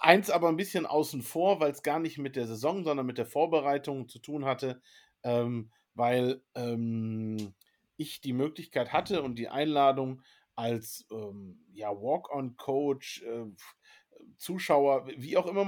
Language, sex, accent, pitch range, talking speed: German, male, German, 125-160 Hz, 140 wpm